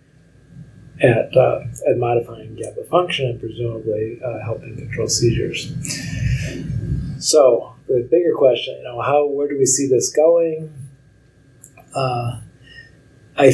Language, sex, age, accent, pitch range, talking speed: English, male, 40-59, American, 120-150 Hz, 120 wpm